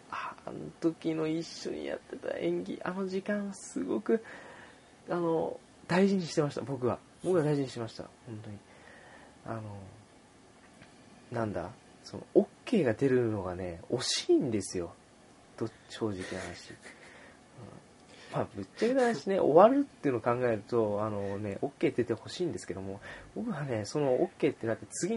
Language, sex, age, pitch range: Japanese, male, 20-39, 105-145 Hz